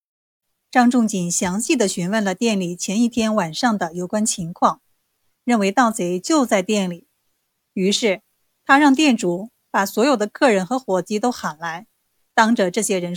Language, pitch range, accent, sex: Chinese, 195-255 Hz, native, female